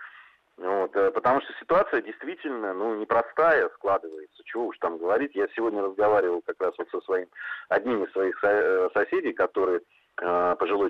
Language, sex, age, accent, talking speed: Russian, male, 30-49, native, 155 wpm